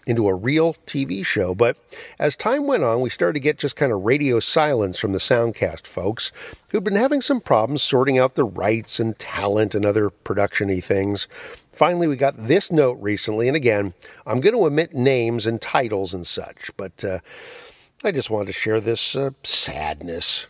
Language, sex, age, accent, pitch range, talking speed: English, male, 50-69, American, 110-155 Hz, 190 wpm